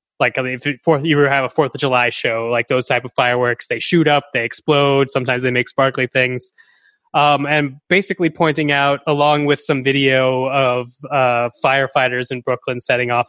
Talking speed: 195 wpm